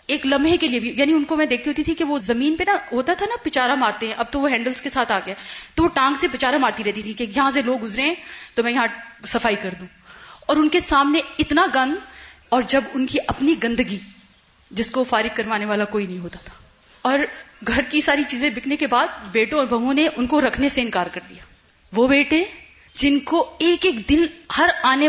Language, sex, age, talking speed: Urdu, female, 30-49, 240 wpm